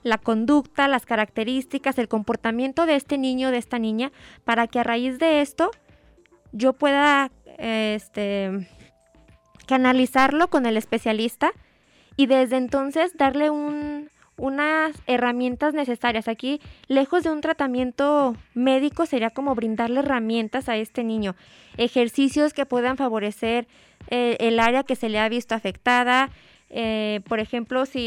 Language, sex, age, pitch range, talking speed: Spanish, female, 20-39, 230-280 Hz, 130 wpm